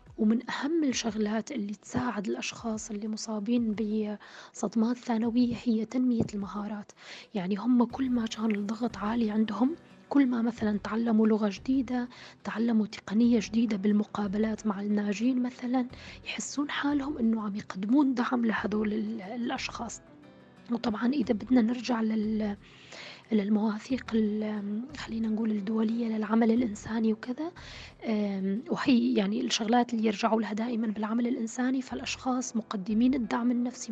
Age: 20-39